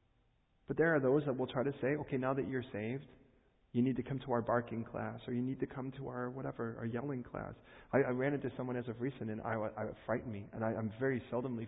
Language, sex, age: English, male, 40-59